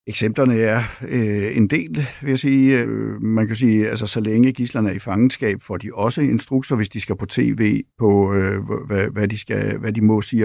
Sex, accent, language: male, native, Danish